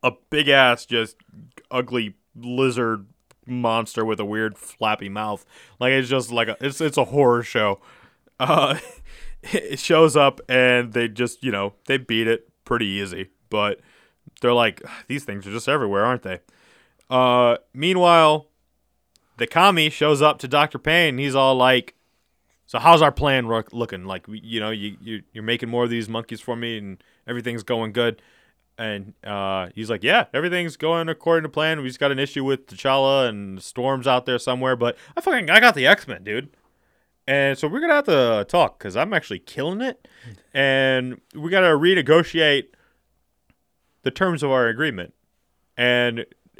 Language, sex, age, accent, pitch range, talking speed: English, male, 20-39, American, 115-150 Hz, 175 wpm